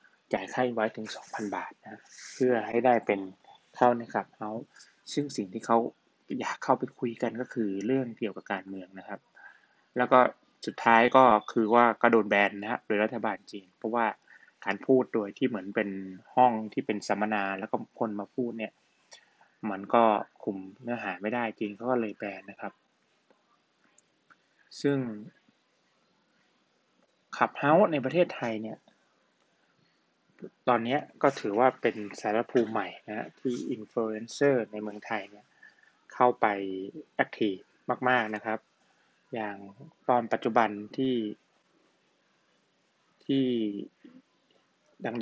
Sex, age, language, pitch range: male, 20-39, Thai, 105-125 Hz